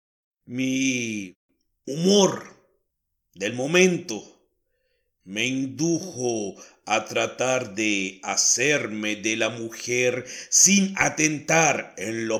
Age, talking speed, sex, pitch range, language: 60-79, 80 wpm, male, 100-150 Hz, Spanish